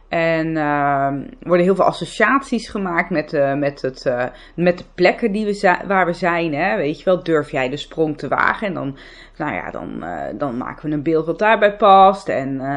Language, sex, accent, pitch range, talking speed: Dutch, female, Dutch, 150-205 Hz, 220 wpm